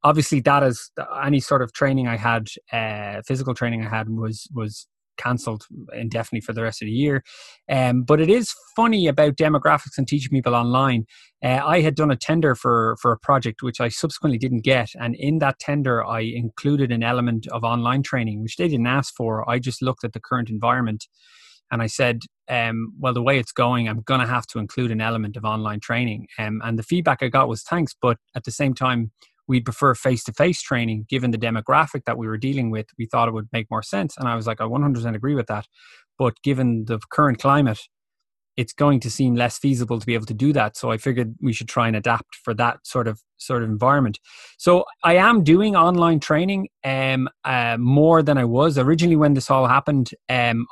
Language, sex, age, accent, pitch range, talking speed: English, male, 20-39, Irish, 115-140 Hz, 215 wpm